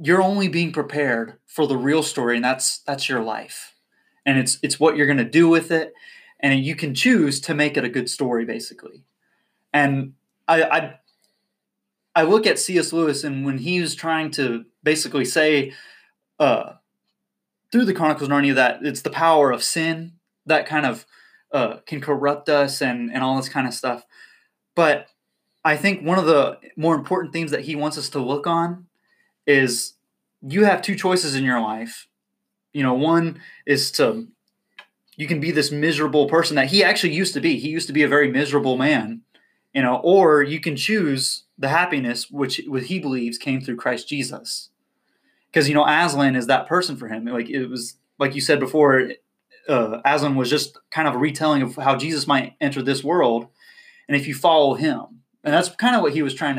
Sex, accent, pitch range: male, American, 135-165 Hz